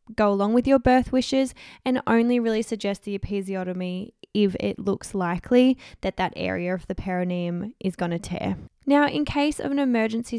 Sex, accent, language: female, Australian, English